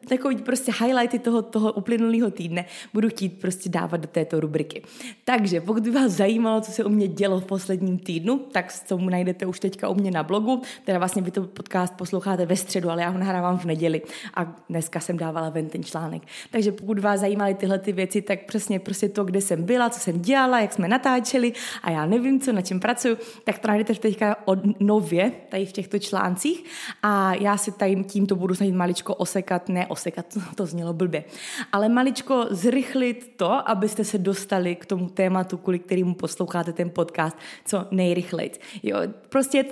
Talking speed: 195 wpm